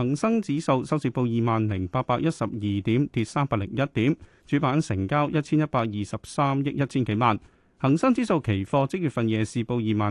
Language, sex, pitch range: Chinese, male, 110-150 Hz